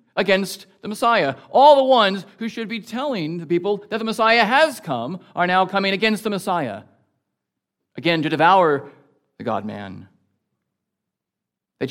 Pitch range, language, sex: 135-180 Hz, English, male